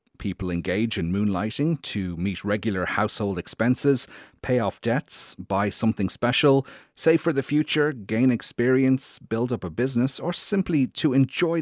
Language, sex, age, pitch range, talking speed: English, male, 30-49, 95-125 Hz, 150 wpm